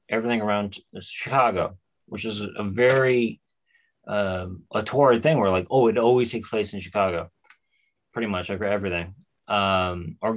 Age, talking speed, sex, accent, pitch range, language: 20-39, 155 wpm, male, American, 90-110 Hz, English